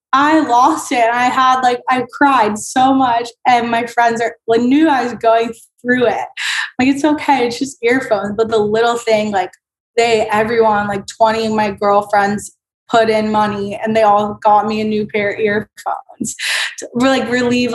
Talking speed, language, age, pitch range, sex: 185 wpm, English, 20-39, 205-235 Hz, female